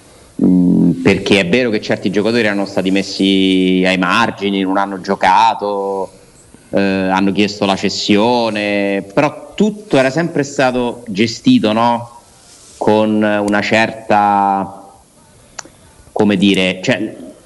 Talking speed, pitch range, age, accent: 110 wpm, 95-115 Hz, 30-49, native